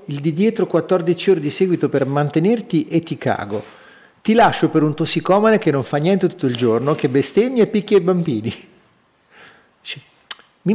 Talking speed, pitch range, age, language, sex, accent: 180 wpm, 150-210 Hz, 50-69, Italian, male, native